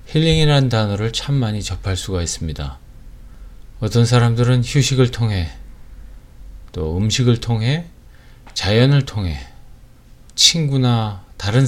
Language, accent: Korean, native